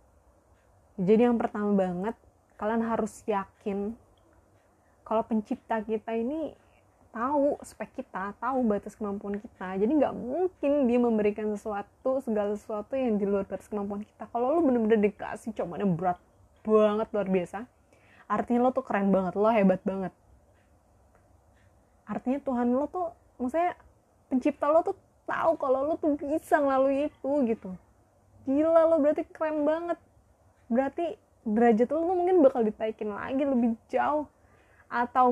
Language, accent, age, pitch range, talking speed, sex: Indonesian, native, 20-39, 200-265 Hz, 135 wpm, female